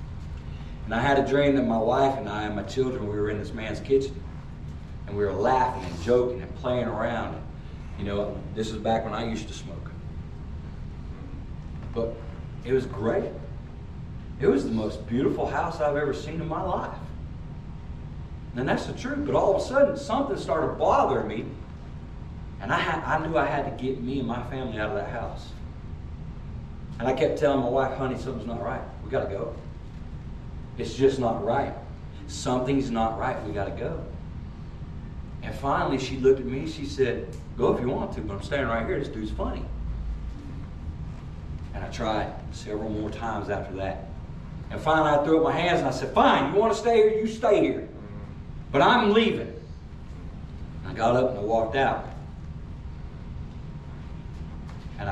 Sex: male